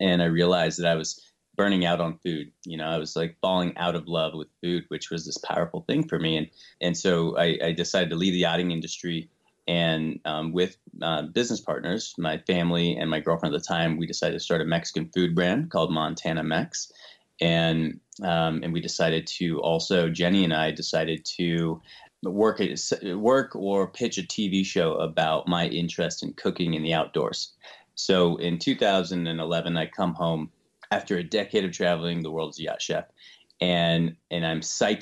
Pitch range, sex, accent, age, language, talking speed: 80-95 Hz, male, American, 30-49, English, 190 wpm